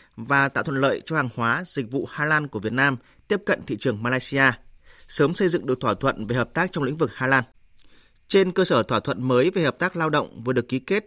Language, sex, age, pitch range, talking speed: Vietnamese, male, 20-39, 130-165 Hz, 260 wpm